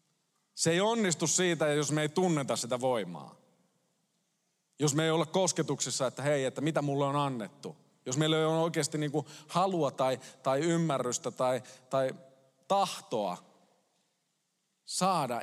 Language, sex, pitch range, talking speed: Finnish, male, 130-185 Hz, 140 wpm